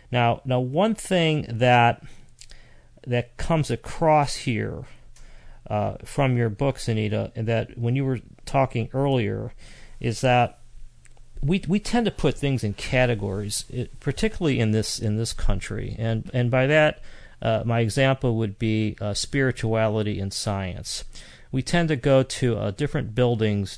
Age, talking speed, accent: 40-59, 145 wpm, American